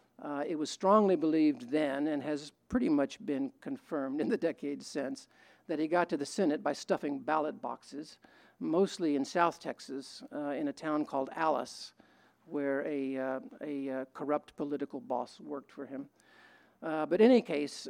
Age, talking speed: 50-69, 175 wpm